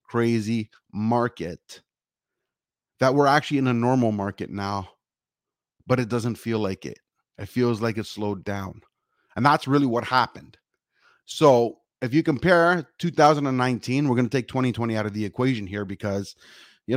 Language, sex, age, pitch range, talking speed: English, male, 30-49, 110-145 Hz, 155 wpm